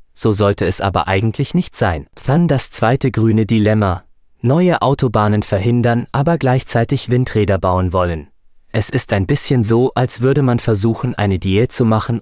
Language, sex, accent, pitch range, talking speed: German, male, German, 95-125 Hz, 160 wpm